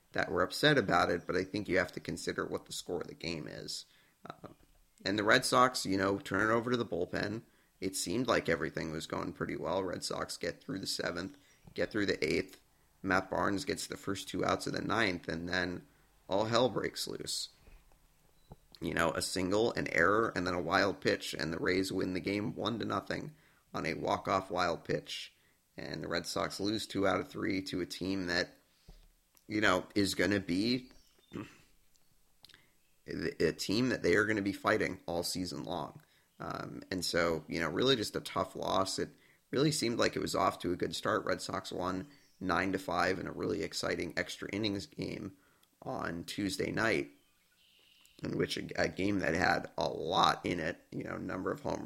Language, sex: English, male